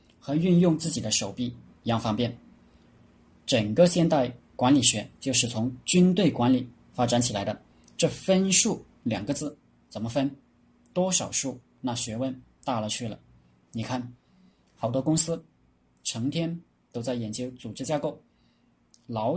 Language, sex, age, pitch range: Chinese, male, 20-39, 115-145 Hz